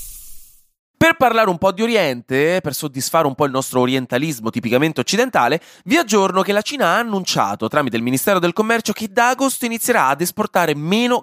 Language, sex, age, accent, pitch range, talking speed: Italian, male, 20-39, native, 115-165 Hz, 180 wpm